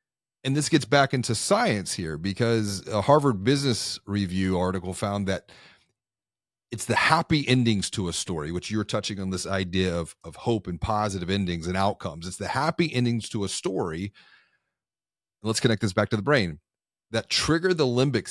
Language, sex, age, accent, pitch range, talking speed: English, male, 30-49, American, 95-130 Hz, 175 wpm